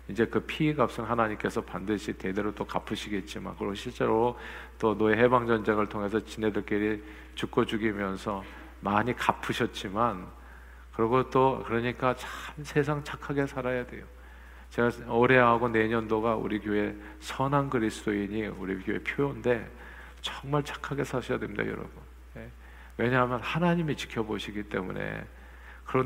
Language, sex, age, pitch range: Korean, male, 50-69, 95-130 Hz